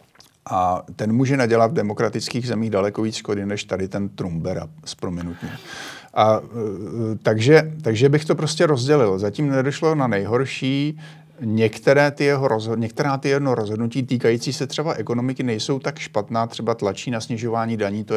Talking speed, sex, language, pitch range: 145 wpm, male, Slovak, 105-135 Hz